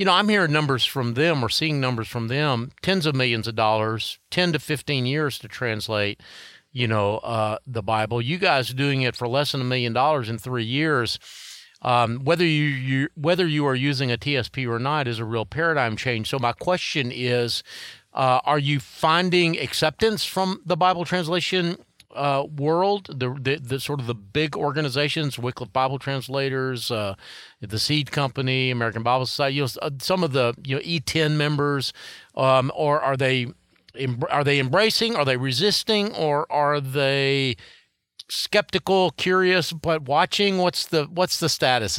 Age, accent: 40-59, American